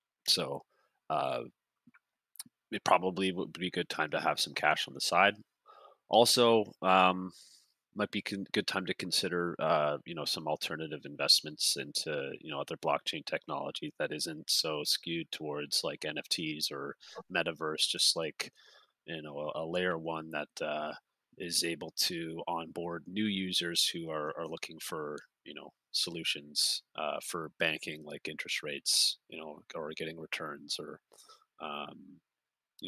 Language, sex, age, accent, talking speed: English, male, 30-49, American, 150 wpm